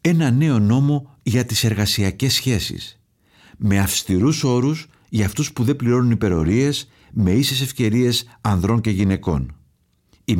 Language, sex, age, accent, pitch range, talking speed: Greek, male, 50-69, native, 100-125 Hz, 135 wpm